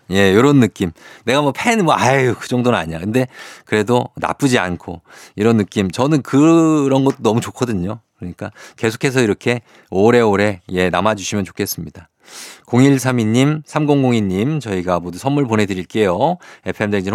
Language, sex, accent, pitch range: Korean, male, native, 95-140 Hz